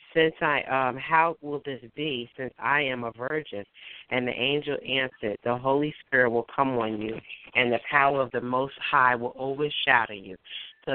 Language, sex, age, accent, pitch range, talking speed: English, female, 40-59, American, 120-145 Hz, 185 wpm